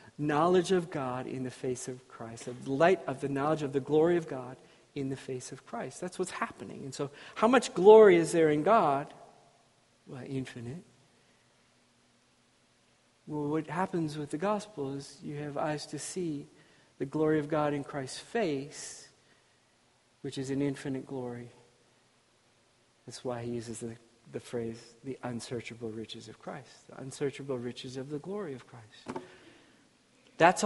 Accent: American